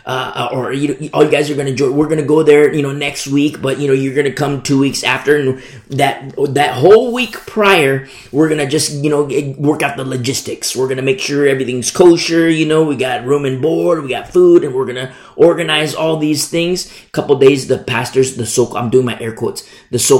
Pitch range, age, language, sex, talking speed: 115-150 Hz, 30-49, English, male, 230 wpm